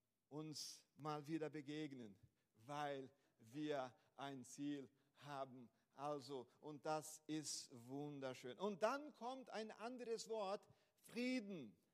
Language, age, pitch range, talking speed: German, 50-69, 160-235 Hz, 105 wpm